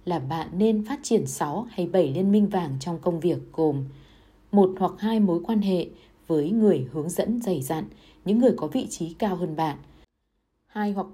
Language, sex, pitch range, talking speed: Vietnamese, female, 160-215 Hz, 200 wpm